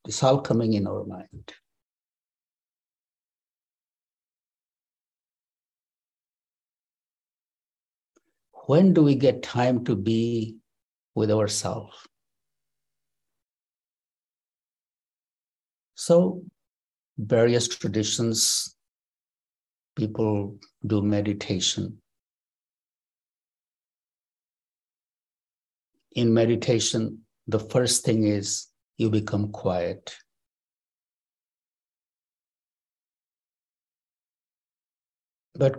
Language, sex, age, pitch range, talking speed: English, male, 60-79, 105-125 Hz, 50 wpm